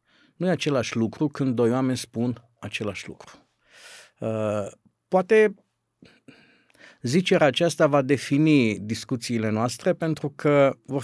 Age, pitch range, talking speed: 50-69, 120-170 Hz, 110 wpm